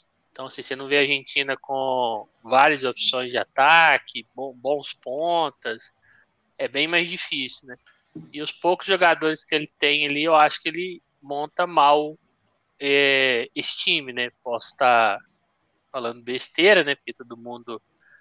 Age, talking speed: 20-39, 150 wpm